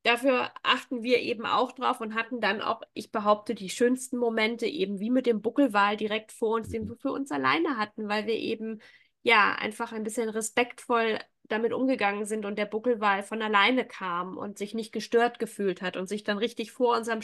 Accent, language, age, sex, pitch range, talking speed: German, German, 20-39, female, 210-245 Hz, 200 wpm